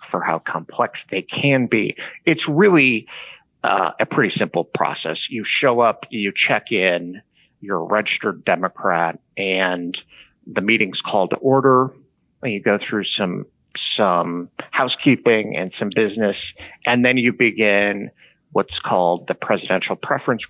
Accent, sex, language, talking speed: American, male, English, 140 wpm